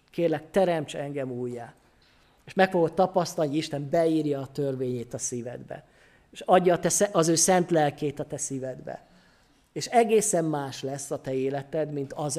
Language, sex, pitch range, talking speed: Hungarian, male, 140-175 Hz, 165 wpm